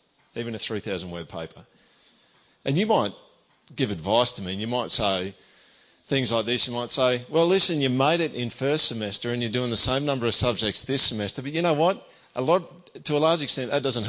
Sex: male